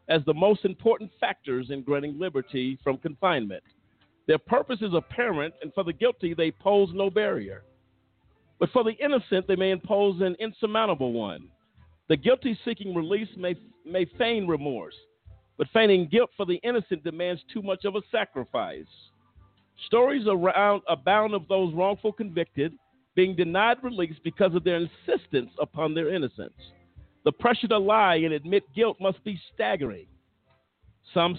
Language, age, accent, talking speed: English, 50-69, American, 155 wpm